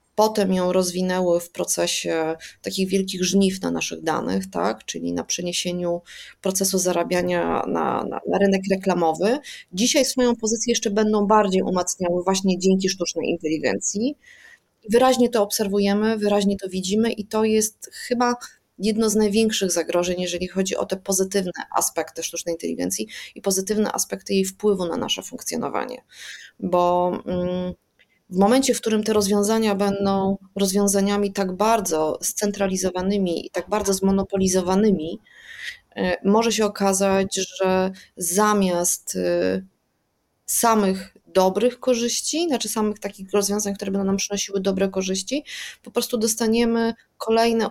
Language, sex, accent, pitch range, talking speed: Polish, female, native, 185-215 Hz, 130 wpm